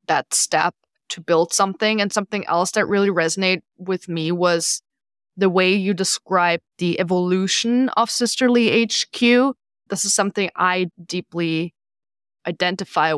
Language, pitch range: English, 170-200 Hz